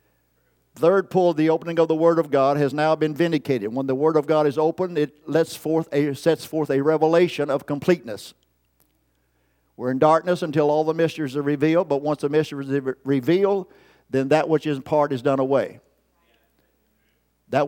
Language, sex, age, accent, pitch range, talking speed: English, male, 50-69, American, 125-160 Hz, 185 wpm